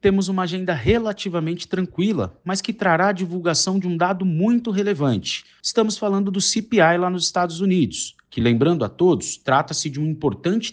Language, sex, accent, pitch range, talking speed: Portuguese, male, Brazilian, 150-195 Hz, 175 wpm